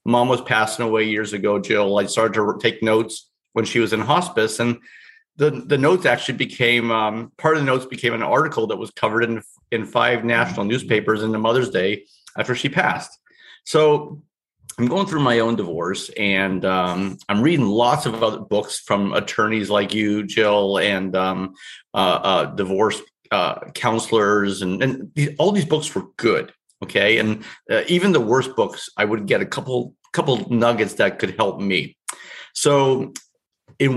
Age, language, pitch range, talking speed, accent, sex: 30-49, English, 105-135 Hz, 175 wpm, American, male